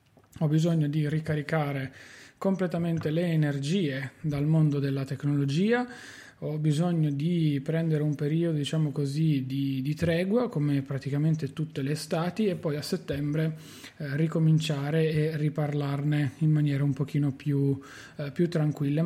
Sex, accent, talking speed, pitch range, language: male, native, 135 wpm, 145-170 Hz, Italian